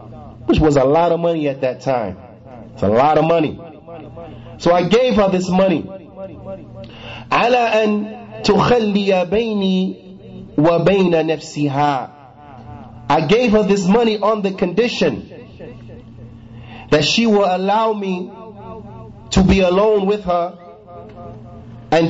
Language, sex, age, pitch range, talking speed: English, male, 30-49, 135-220 Hz, 105 wpm